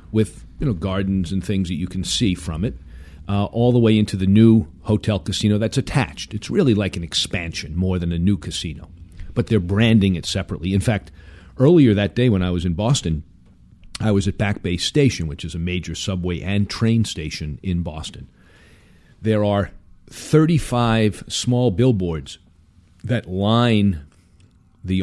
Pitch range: 90-115 Hz